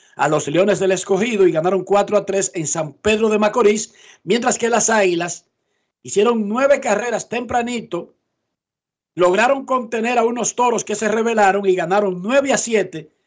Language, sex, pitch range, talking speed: Spanish, male, 180-225 Hz, 165 wpm